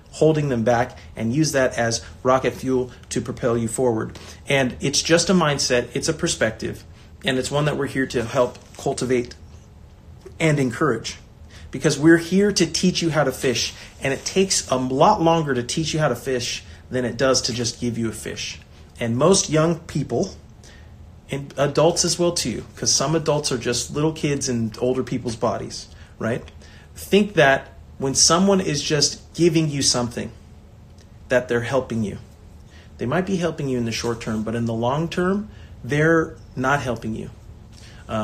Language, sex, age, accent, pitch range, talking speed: English, male, 30-49, American, 110-150 Hz, 180 wpm